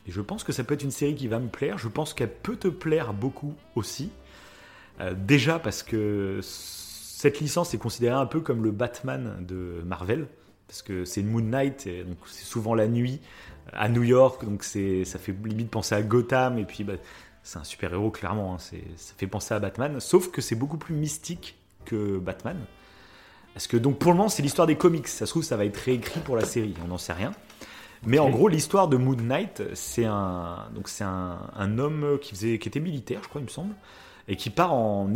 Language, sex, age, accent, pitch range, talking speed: French, male, 30-49, French, 100-140 Hz, 230 wpm